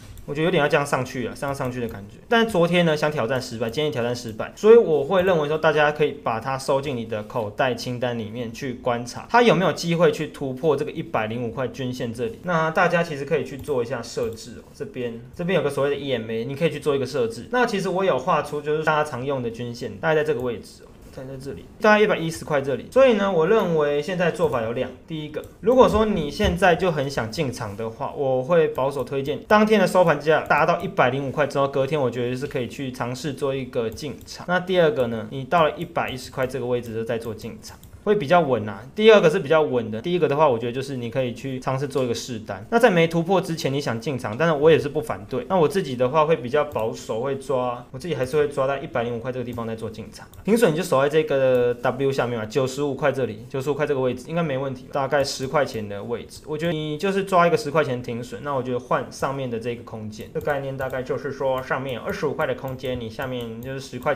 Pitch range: 125-160 Hz